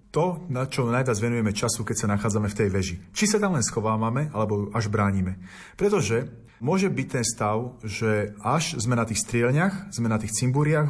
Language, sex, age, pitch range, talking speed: Slovak, male, 30-49, 105-155 Hz, 195 wpm